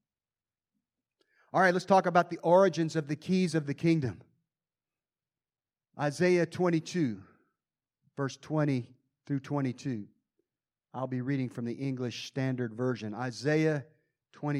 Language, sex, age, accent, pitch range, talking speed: English, male, 40-59, American, 125-155 Hz, 120 wpm